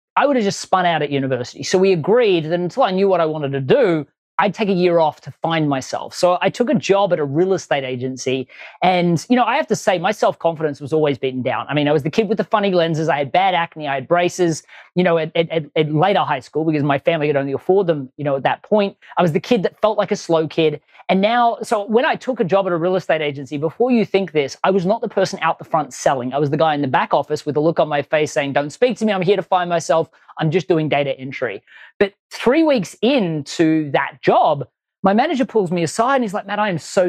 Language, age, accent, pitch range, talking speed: English, 30-49, Australian, 150-205 Hz, 275 wpm